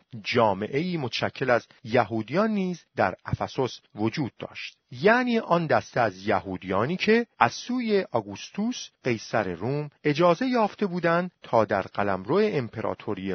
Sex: male